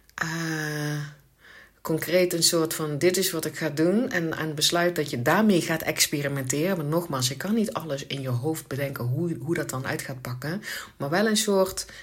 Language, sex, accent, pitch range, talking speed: Dutch, female, Dutch, 130-185 Hz, 200 wpm